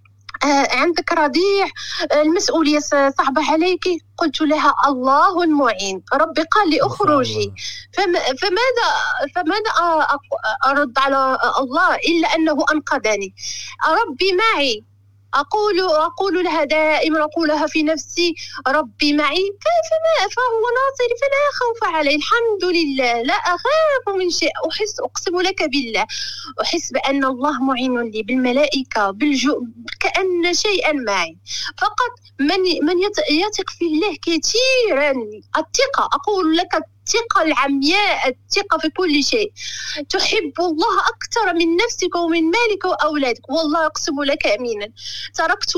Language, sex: Arabic, female